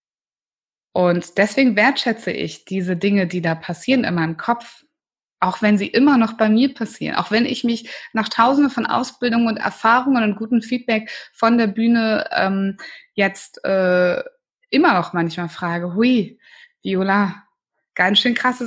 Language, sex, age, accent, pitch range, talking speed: German, female, 20-39, German, 190-255 Hz, 155 wpm